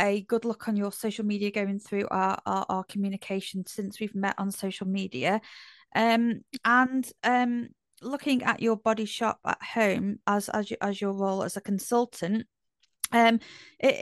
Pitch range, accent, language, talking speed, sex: 205-245 Hz, British, English, 170 wpm, female